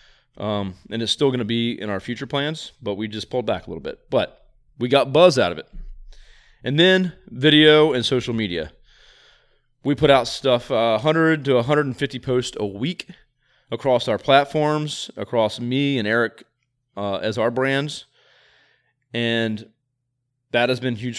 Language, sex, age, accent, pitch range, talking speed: English, male, 30-49, American, 110-140 Hz, 165 wpm